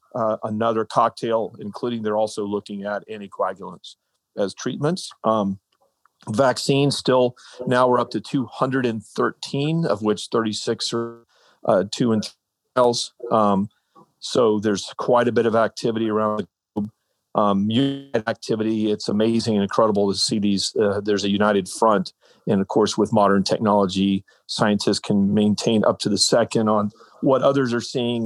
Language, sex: English, male